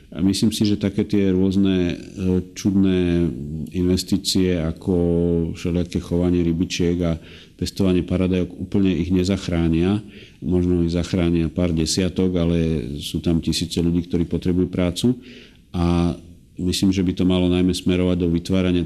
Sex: male